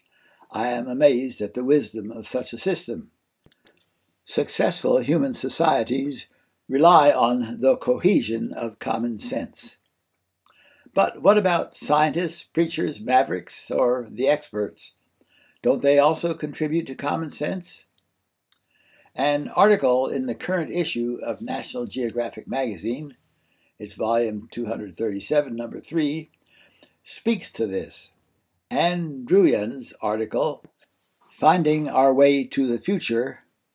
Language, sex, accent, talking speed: English, male, American, 110 wpm